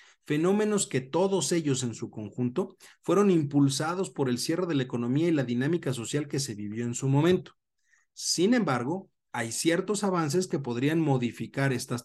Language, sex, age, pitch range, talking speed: Spanish, male, 40-59, 120-170 Hz, 170 wpm